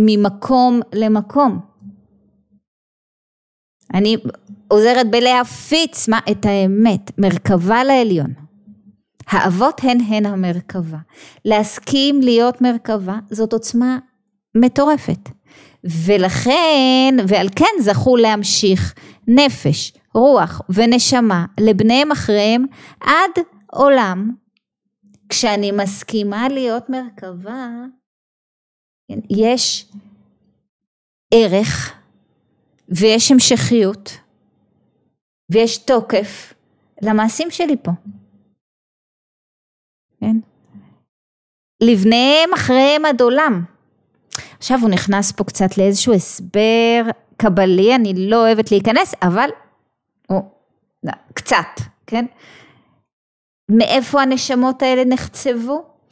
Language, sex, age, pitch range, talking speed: Hebrew, female, 20-39, 205-255 Hz, 75 wpm